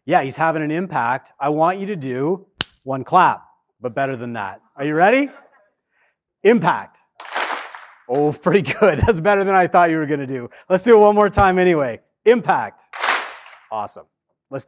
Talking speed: 170 wpm